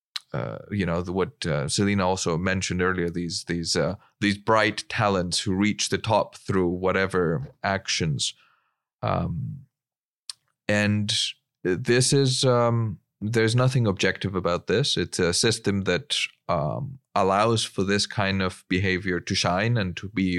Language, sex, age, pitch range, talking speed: English, male, 30-49, 90-105 Hz, 145 wpm